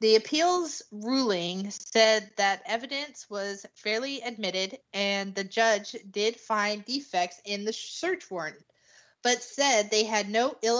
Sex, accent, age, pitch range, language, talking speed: female, American, 30-49, 200-250 Hz, English, 140 wpm